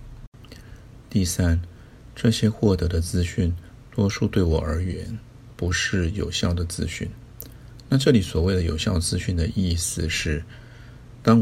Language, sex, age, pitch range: Chinese, male, 50-69, 85-115 Hz